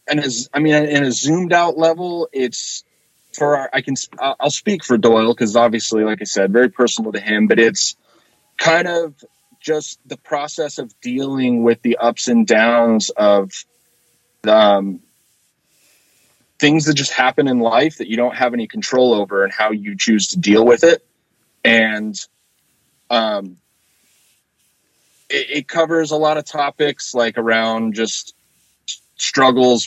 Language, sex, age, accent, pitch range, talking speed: English, male, 30-49, American, 110-145 Hz, 155 wpm